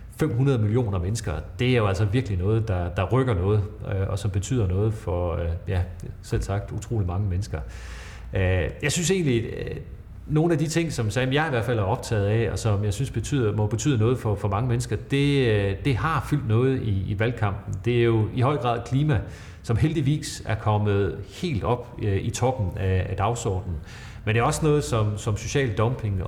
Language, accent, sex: Danish, native, male